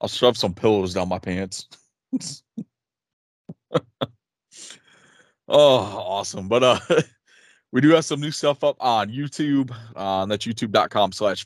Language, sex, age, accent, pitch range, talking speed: English, male, 30-49, American, 95-115 Hz, 125 wpm